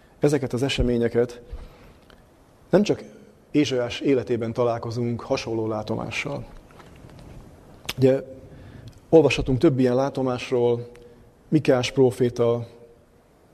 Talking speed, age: 75 wpm, 30-49